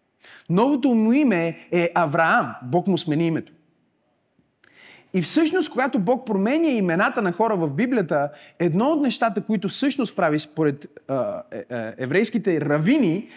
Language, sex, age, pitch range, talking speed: Bulgarian, male, 30-49, 160-205 Hz, 140 wpm